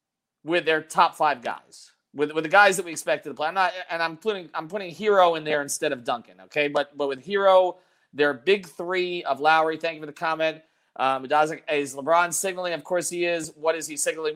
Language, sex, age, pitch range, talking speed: English, male, 30-49, 140-180 Hz, 225 wpm